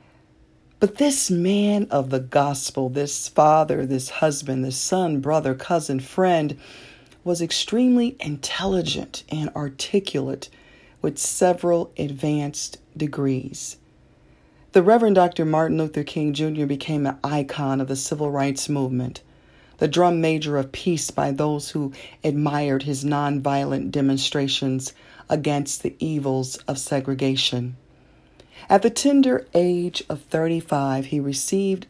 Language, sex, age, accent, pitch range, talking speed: English, female, 40-59, American, 135-170 Hz, 120 wpm